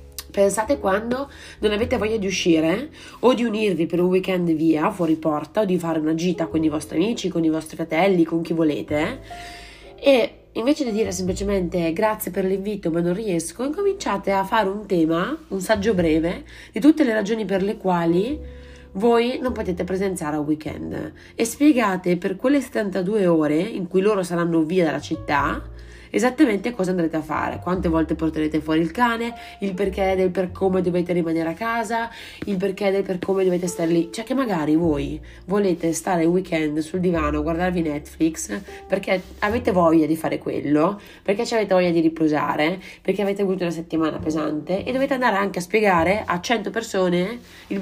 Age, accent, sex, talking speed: 30-49, native, female, 185 wpm